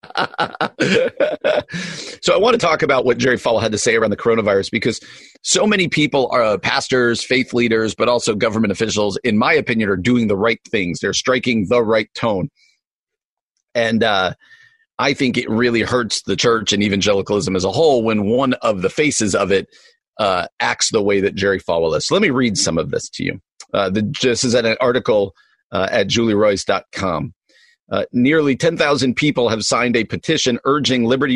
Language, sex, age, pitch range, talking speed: English, male, 40-59, 110-140 Hz, 185 wpm